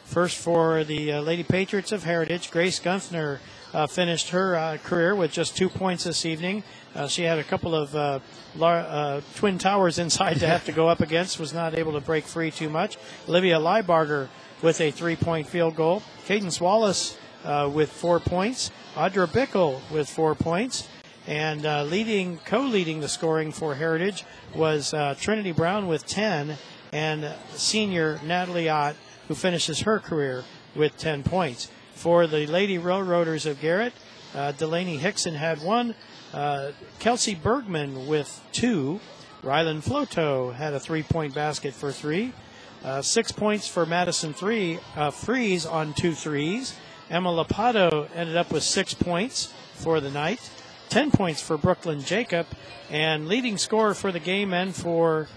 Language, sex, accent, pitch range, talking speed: English, male, American, 150-185 Hz, 160 wpm